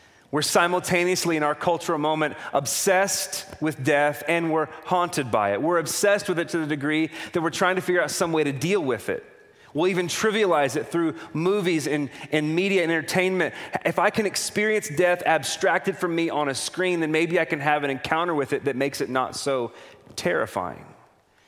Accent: American